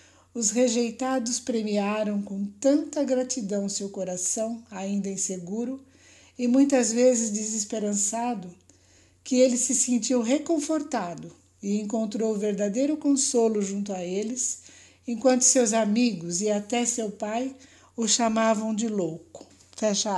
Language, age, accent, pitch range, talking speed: Portuguese, 50-69, Brazilian, 190-235 Hz, 115 wpm